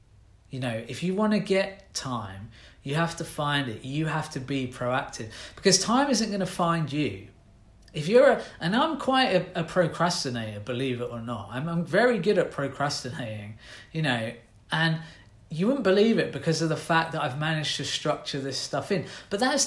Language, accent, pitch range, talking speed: English, British, 120-175 Hz, 200 wpm